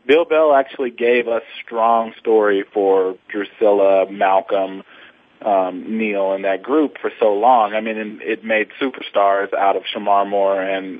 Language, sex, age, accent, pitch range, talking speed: English, male, 40-59, American, 100-125 Hz, 155 wpm